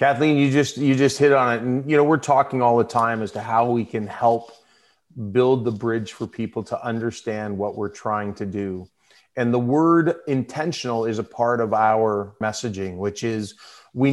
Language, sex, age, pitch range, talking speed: English, male, 30-49, 120-145 Hz, 200 wpm